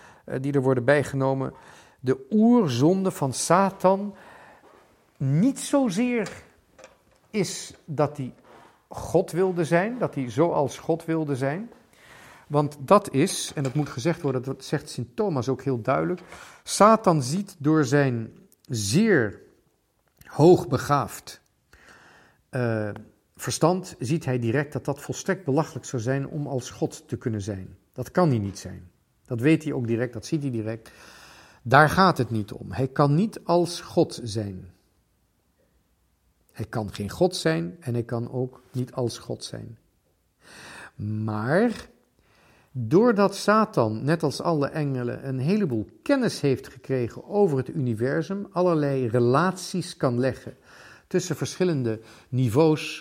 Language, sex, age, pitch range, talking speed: Dutch, male, 50-69, 125-175 Hz, 135 wpm